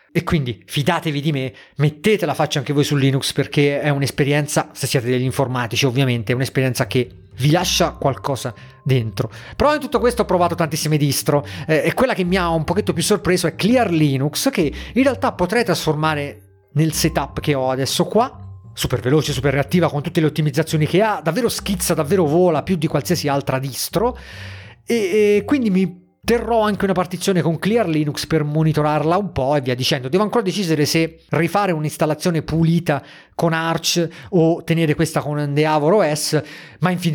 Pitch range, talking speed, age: 140-175 Hz, 185 wpm, 30-49